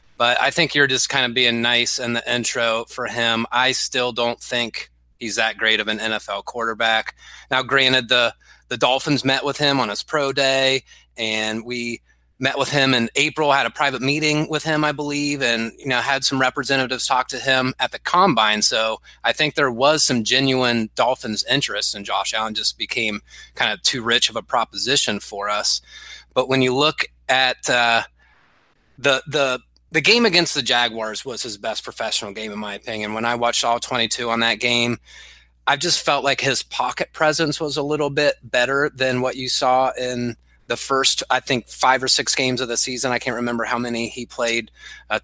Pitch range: 115-140 Hz